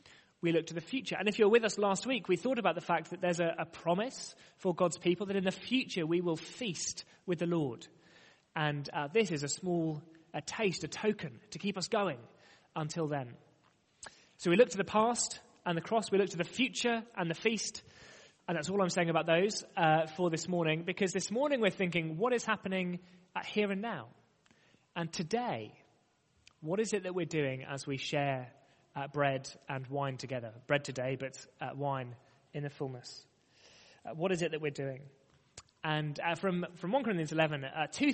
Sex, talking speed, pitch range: male, 205 wpm, 155-195 Hz